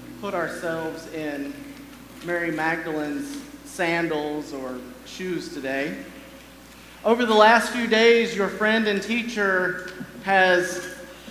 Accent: American